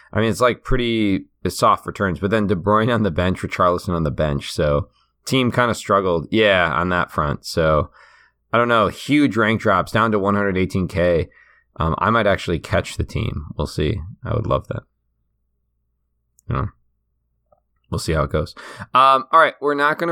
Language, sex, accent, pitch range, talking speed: English, male, American, 90-115 Hz, 195 wpm